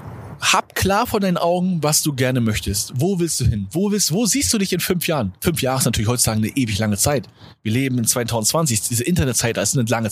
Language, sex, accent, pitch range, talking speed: German, male, German, 115-160 Hz, 250 wpm